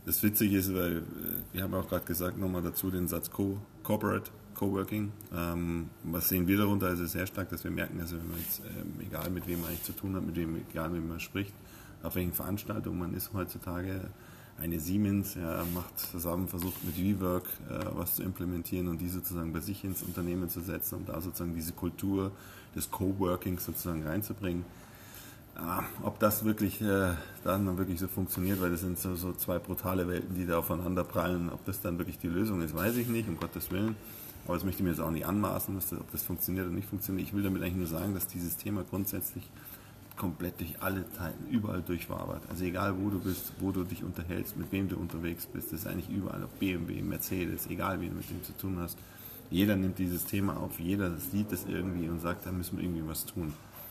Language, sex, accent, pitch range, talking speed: German, male, German, 85-100 Hz, 210 wpm